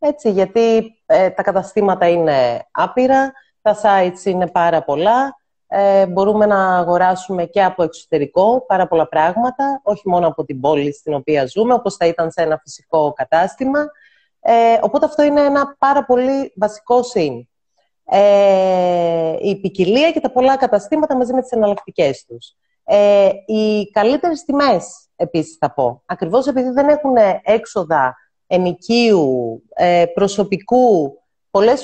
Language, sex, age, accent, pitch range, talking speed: Greek, female, 30-49, native, 175-260 Hz, 140 wpm